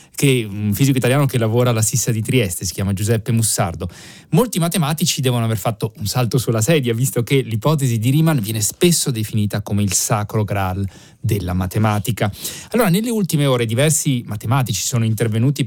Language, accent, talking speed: Italian, native, 170 wpm